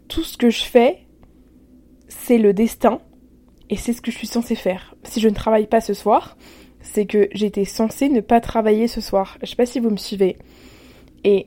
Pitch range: 205-240 Hz